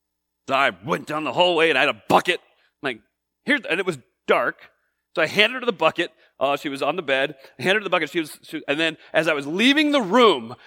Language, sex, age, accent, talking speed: English, male, 30-49, American, 245 wpm